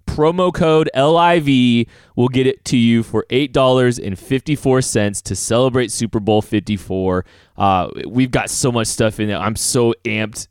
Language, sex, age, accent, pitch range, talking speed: English, male, 20-39, American, 105-135 Hz, 185 wpm